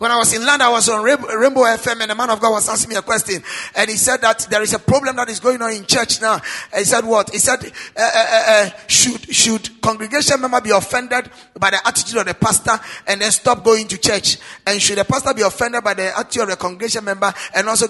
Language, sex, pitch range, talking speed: English, male, 210-275 Hz, 255 wpm